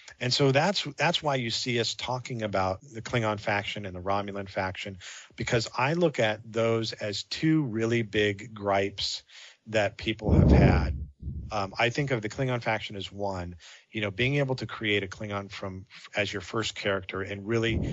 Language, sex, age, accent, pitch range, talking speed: English, male, 40-59, American, 95-115 Hz, 185 wpm